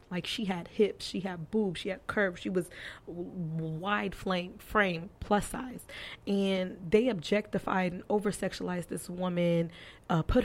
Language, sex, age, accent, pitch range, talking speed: English, female, 20-39, American, 180-215 Hz, 150 wpm